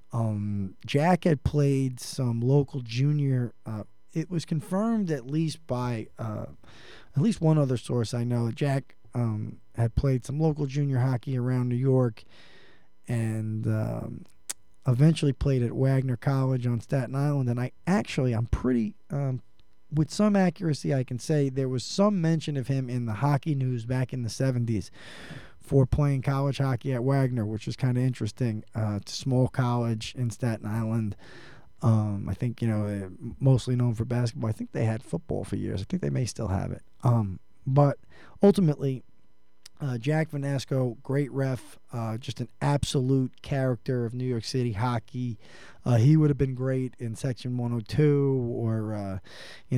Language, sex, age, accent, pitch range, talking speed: English, male, 20-39, American, 115-140 Hz, 170 wpm